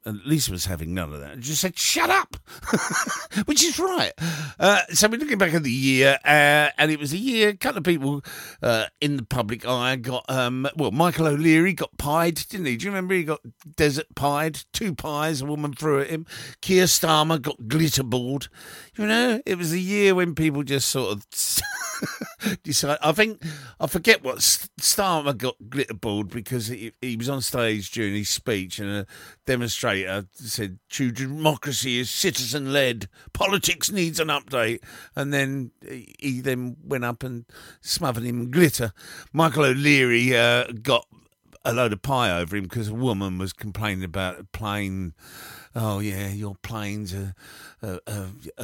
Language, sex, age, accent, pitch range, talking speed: English, male, 50-69, British, 110-155 Hz, 175 wpm